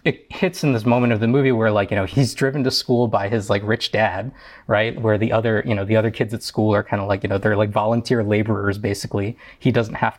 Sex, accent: male, American